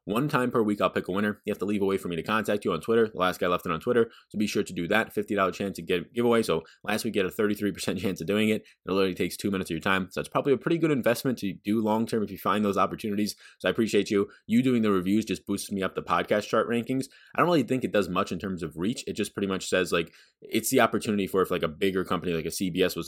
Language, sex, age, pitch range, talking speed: English, male, 20-39, 90-115 Hz, 315 wpm